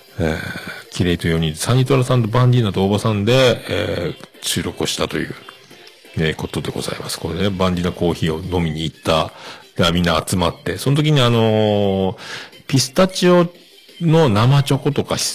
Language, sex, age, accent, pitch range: Japanese, male, 50-69, native, 90-140 Hz